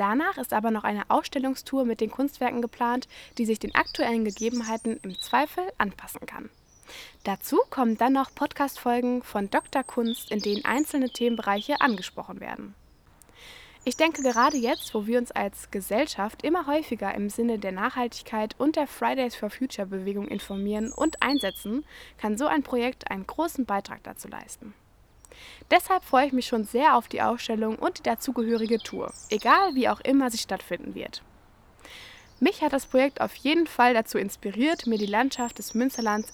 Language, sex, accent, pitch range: German, female, German, 220-285 Hz